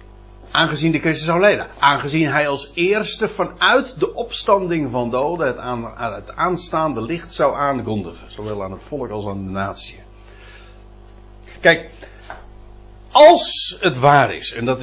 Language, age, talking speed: Dutch, 60-79, 140 wpm